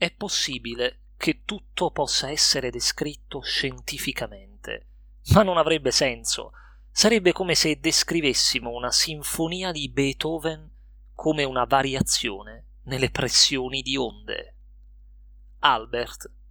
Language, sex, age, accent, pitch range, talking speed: Italian, male, 30-49, native, 115-150 Hz, 100 wpm